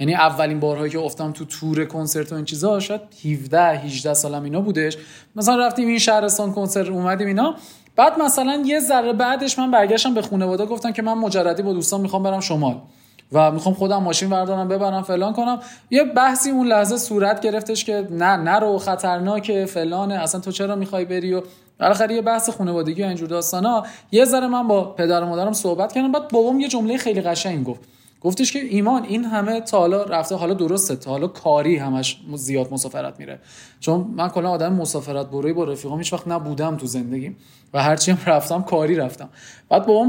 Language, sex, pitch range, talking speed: Persian, male, 155-210 Hz, 195 wpm